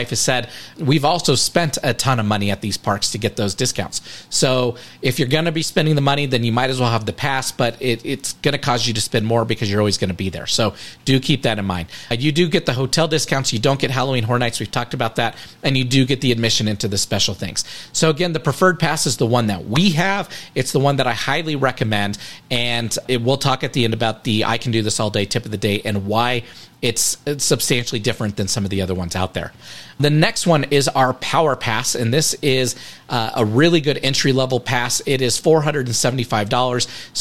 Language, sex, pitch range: English, male, 115-145 Hz